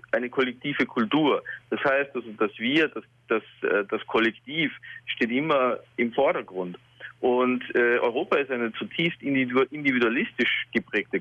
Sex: male